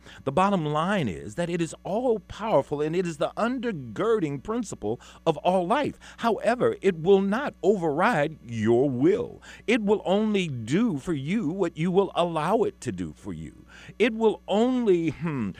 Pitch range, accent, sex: 115-195 Hz, American, male